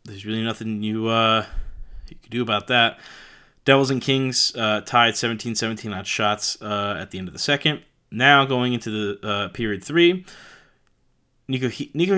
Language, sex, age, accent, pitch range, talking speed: English, male, 20-39, American, 110-140 Hz, 170 wpm